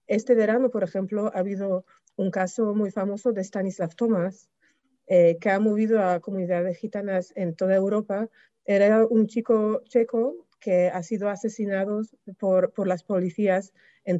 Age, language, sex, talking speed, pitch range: 30-49, Spanish, female, 150 wpm, 180-220 Hz